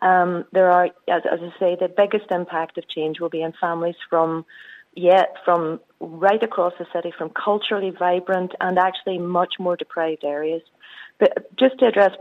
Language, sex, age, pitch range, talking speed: English, female, 40-59, 180-220 Hz, 180 wpm